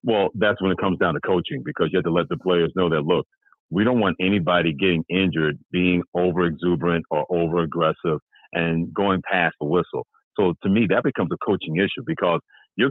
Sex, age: male, 40-59